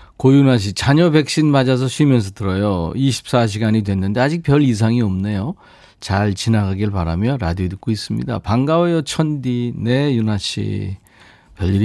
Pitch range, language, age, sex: 95-140 Hz, Korean, 40-59, male